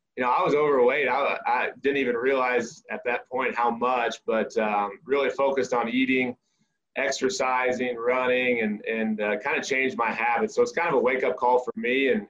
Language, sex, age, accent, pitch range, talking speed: English, male, 20-39, American, 115-160 Hz, 200 wpm